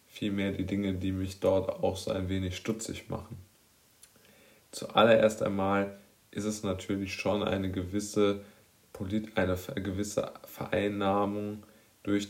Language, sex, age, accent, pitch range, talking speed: German, male, 20-39, German, 95-105 Hz, 110 wpm